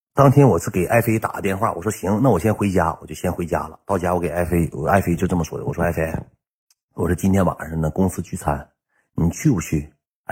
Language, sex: Chinese, male